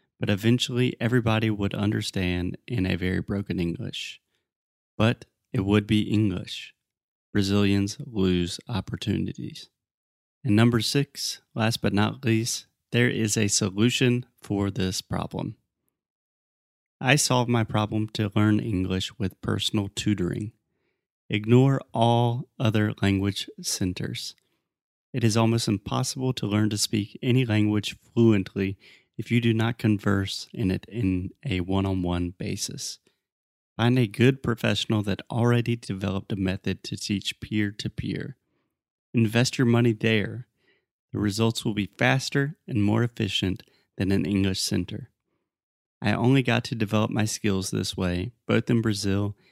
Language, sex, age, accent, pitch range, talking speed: Portuguese, male, 30-49, American, 100-120 Hz, 130 wpm